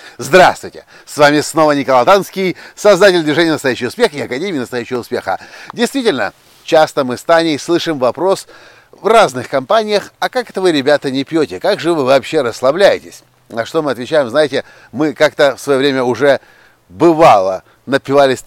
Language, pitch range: Russian, 125-160 Hz